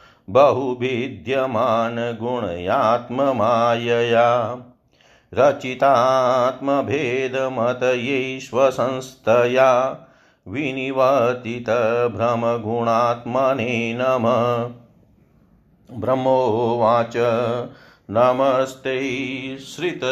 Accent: native